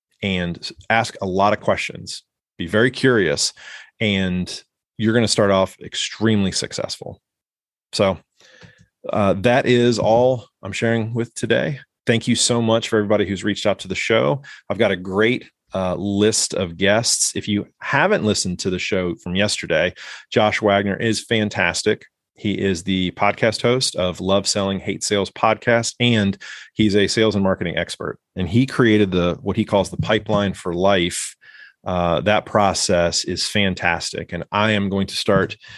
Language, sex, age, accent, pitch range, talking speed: English, male, 30-49, American, 90-115 Hz, 165 wpm